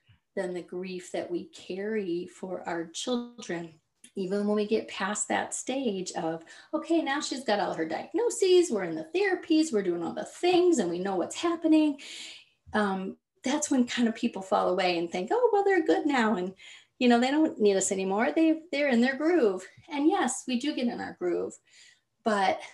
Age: 30-49